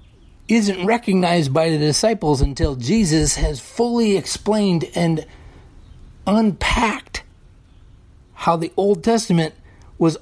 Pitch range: 100-165 Hz